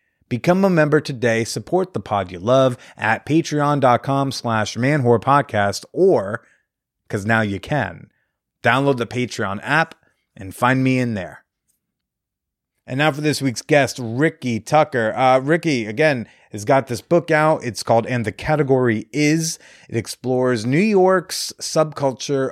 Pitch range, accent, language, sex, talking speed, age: 110-150 Hz, American, English, male, 145 wpm, 30-49